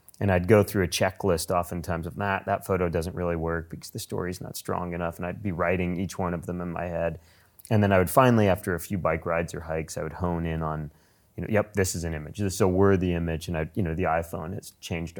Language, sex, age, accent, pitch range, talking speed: English, male, 30-49, American, 80-95 Hz, 270 wpm